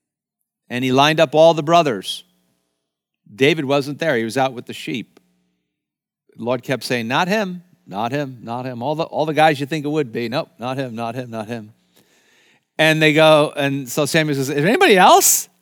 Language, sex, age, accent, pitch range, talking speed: English, male, 50-69, American, 105-160 Hz, 210 wpm